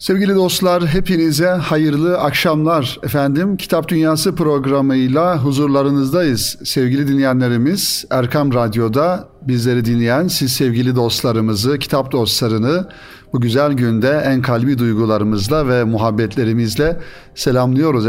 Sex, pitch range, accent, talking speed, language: male, 120-155 Hz, native, 100 wpm, Turkish